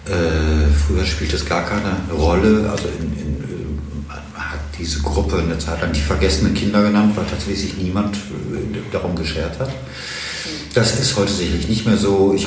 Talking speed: 175 wpm